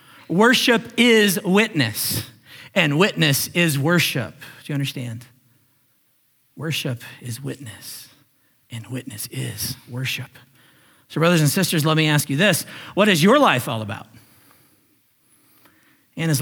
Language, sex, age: English, male, 40-59